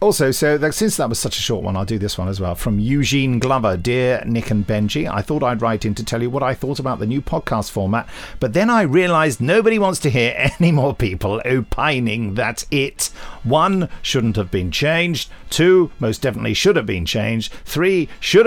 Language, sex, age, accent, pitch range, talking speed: English, male, 50-69, British, 115-165 Hz, 215 wpm